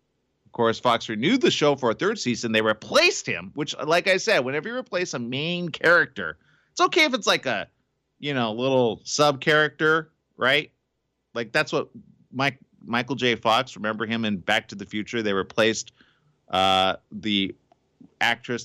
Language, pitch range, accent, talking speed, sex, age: English, 115-160 Hz, American, 175 wpm, male, 30-49